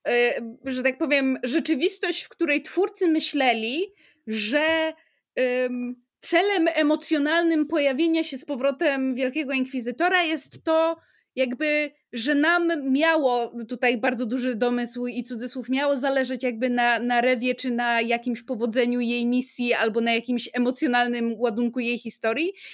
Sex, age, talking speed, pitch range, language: female, 20-39, 125 wpm, 235-300 Hz, Polish